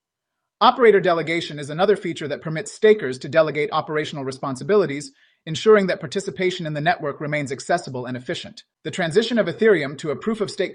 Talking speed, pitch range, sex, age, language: 160 wpm, 145-195 Hz, male, 30-49, English